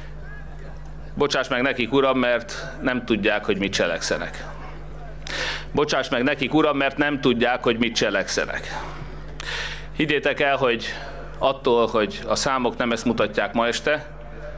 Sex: male